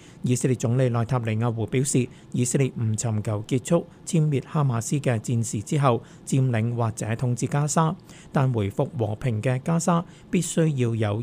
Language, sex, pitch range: Chinese, male, 115-155 Hz